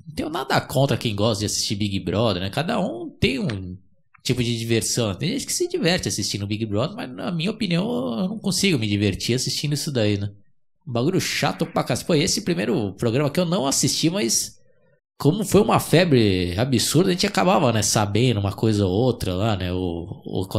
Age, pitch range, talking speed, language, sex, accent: 20-39, 105-150 Hz, 205 wpm, Portuguese, male, Brazilian